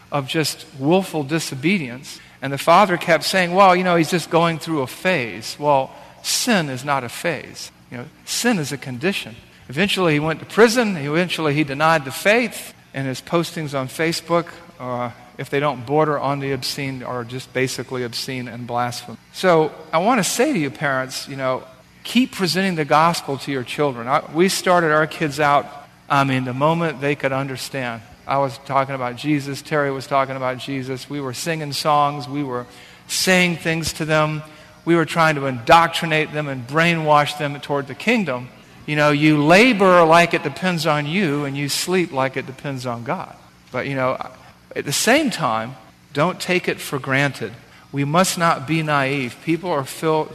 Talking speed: 185 wpm